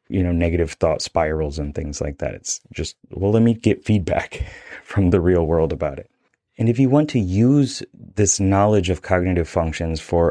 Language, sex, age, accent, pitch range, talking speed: English, male, 30-49, American, 85-105 Hz, 200 wpm